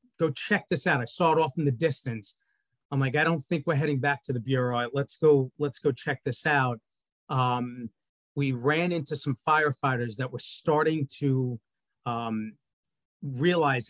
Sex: male